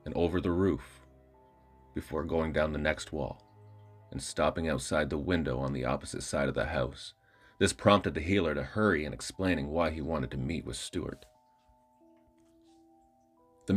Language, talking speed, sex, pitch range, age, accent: English, 165 wpm, male, 75-110 Hz, 30-49, American